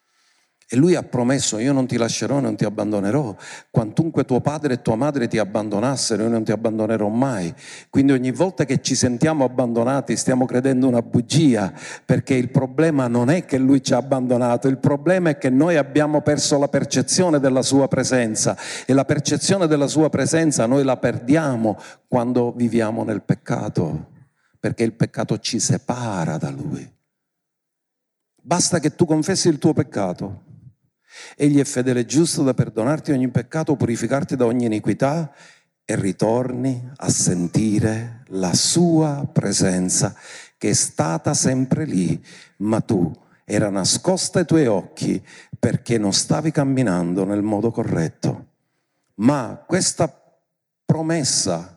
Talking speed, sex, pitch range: 145 wpm, male, 115-150 Hz